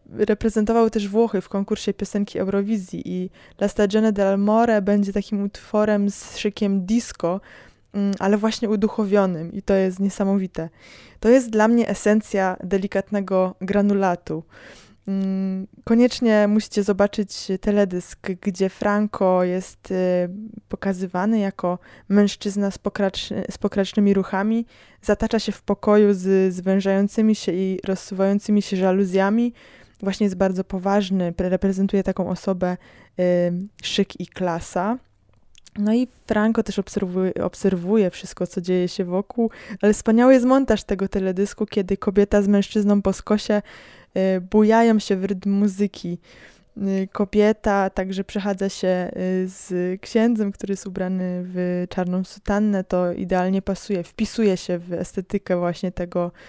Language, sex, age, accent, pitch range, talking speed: Polish, female, 20-39, native, 185-210 Hz, 125 wpm